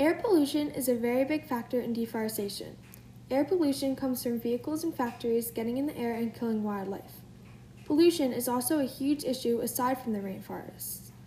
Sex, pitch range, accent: female, 235-285 Hz, American